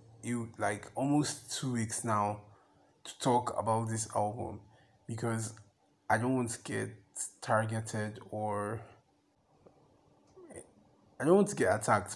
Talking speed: 120 wpm